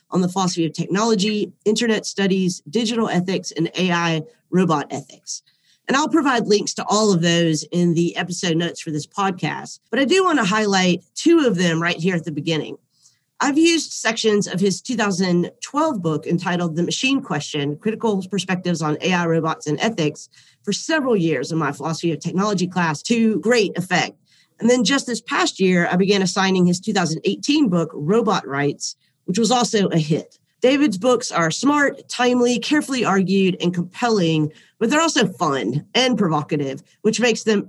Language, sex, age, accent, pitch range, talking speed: English, female, 40-59, American, 165-225 Hz, 175 wpm